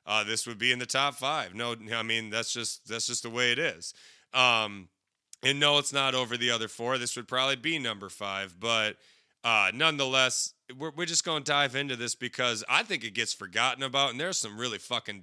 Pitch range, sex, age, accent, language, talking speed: 110-130 Hz, male, 30-49, American, English, 230 wpm